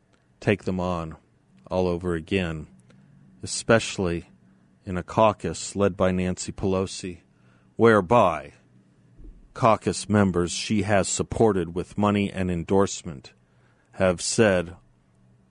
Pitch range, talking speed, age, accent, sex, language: 85-105 Hz, 100 wpm, 50-69, American, male, English